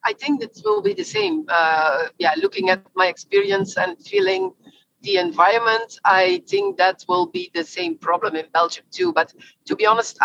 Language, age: English, 40-59